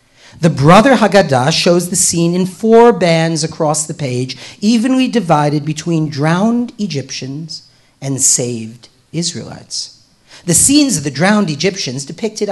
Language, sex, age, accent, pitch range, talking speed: English, male, 40-59, American, 140-225 Hz, 130 wpm